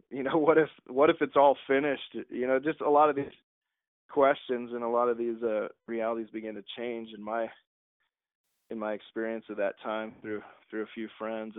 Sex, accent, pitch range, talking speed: male, American, 115-150 Hz, 205 wpm